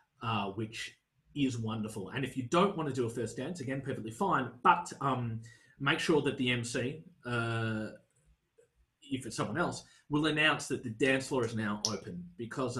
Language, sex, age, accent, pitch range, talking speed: English, male, 30-49, Australian, 120-170 Hz, 185 wpm